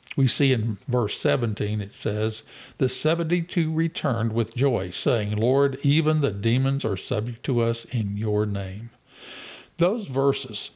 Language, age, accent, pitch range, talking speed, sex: English, 60-79, American, 110-140 Hz, 145 wpm, male